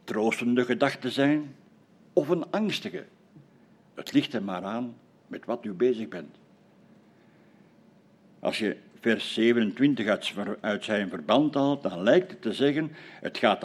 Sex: male